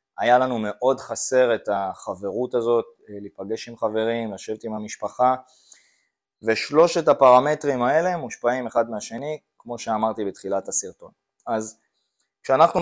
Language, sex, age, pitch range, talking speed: Hebrew, male, 20-39, 105-130 Hz, 115 wpm